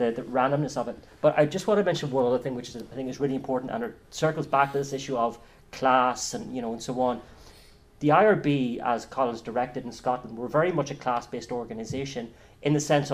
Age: 30-49